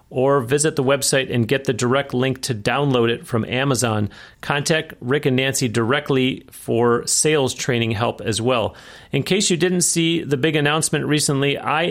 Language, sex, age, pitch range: English, male, 40-59, 125-145 Hz